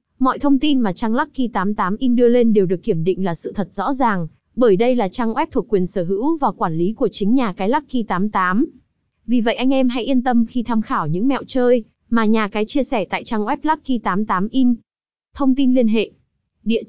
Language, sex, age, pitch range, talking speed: Vietnamese, female, 20-39, 210-260 Hz, 215 wpm